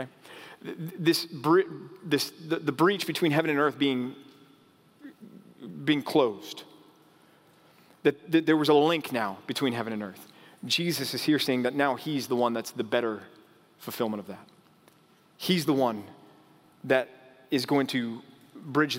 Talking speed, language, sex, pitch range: 145 wpm, English, male, 125-165 Hz